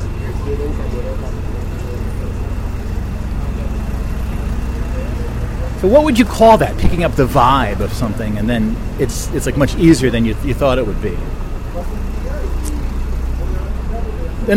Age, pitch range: 30-49, 95-125 Hz